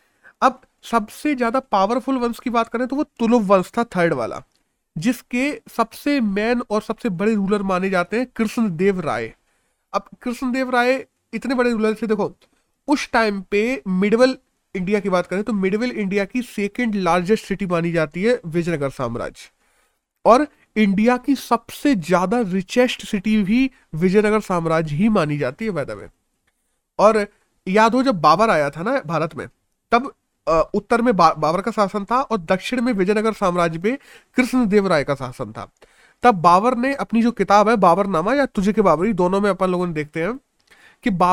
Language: Hindi